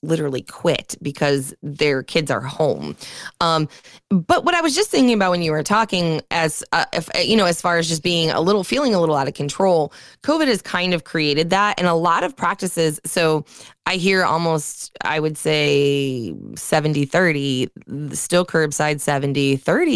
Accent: American